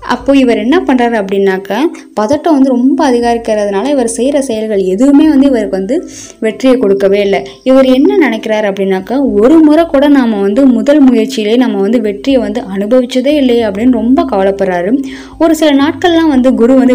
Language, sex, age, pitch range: Tamil, female, 20-39, 210-280 Hz